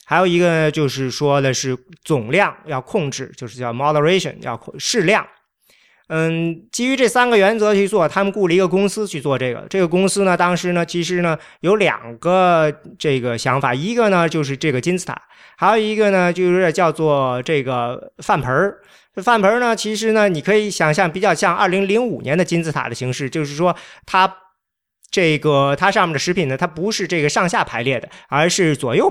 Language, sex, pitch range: Chinese, male, 140-185 Hz